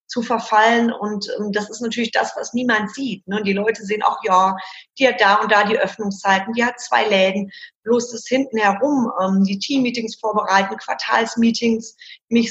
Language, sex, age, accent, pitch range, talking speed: German, female, 30-49, German, 200-235 Hz, 185 wpm